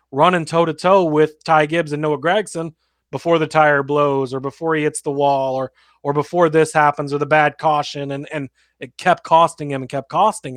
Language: English